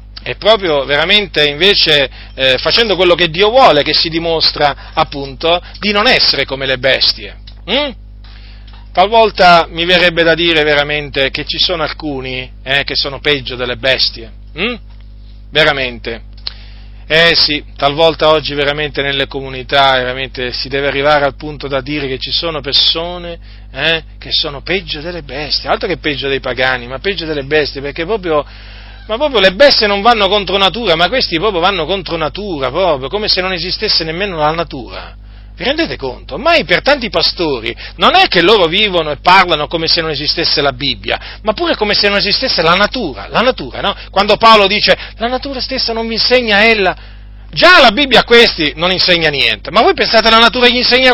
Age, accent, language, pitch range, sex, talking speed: 40-59, native, Italian, 135-200 Hz, male, 180 wpm